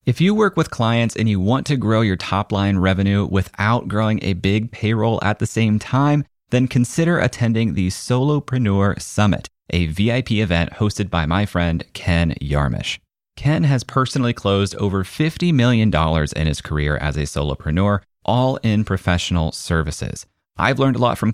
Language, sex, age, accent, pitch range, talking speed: English, male, 30-49, American, 85-115 Hz, 170 wpm